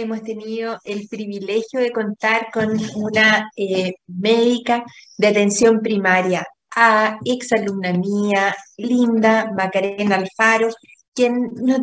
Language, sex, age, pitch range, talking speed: Spanish, female, 30-49, 215-250 Hz, 110 wpm